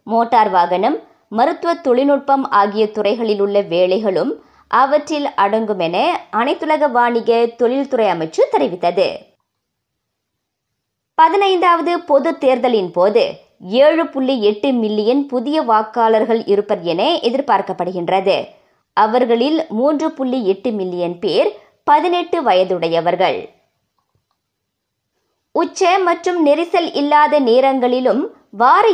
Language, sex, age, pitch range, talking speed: Tamil, male, 20-39, 210-300 Hz, 75 wpm